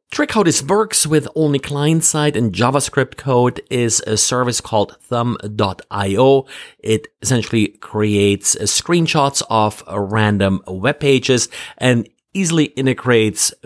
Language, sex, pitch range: English, male, 105-135 Hz